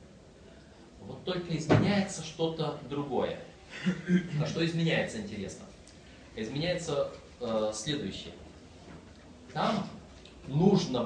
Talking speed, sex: 75 wpm, male